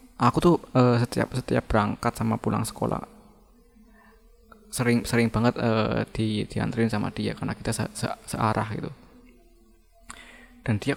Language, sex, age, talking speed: Indonesian, male, 20-39, 125 wpm